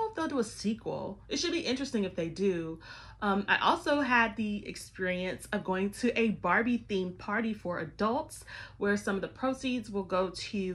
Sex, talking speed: female, 190 wpm